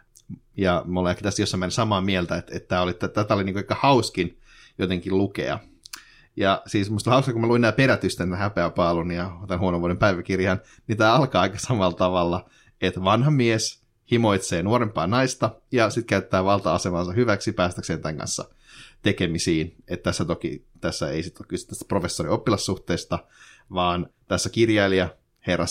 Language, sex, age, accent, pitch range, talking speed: Finnish, male, 30-49, native, 90-110 Hz, 165 wpm